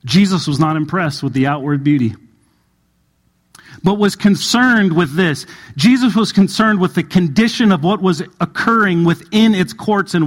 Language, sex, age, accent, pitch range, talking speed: English, male, 40-59, American, 150-200 Hz, 160 wpm